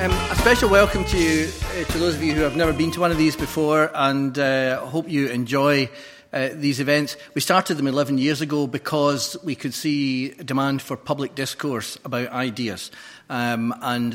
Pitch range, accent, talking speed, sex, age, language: 125-150 Hz, British, 200 wpm, male, 40-59, English